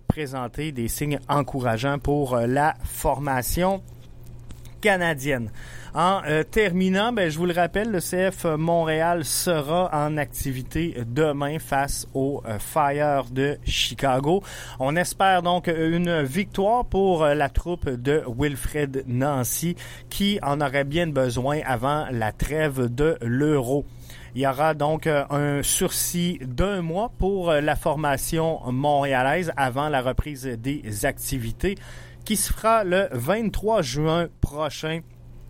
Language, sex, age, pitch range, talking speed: French, male, 30-49, 130-165 Hz, 125 wpm